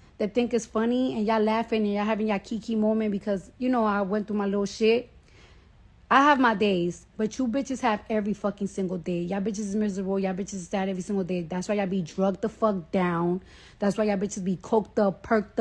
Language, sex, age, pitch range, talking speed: English, female, 20-39, 195-225 Hz, 235 wpm